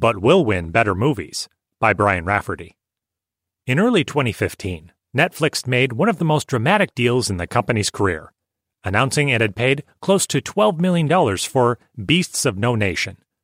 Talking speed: 160 wpm